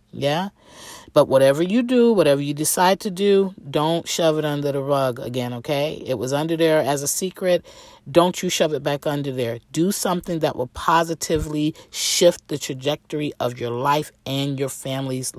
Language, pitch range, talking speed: English, 135-170 Hz, 180 wpm